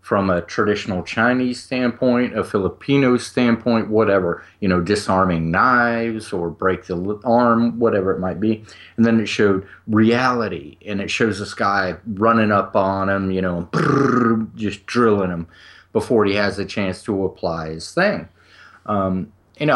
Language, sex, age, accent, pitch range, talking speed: English, male, 30-49, American, 95-125 Hz, 160 wpm